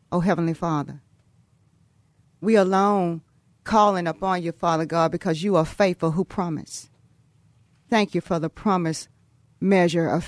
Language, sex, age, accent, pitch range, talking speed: English, female, 40-59, American, 150-185 Hz, 135 wpm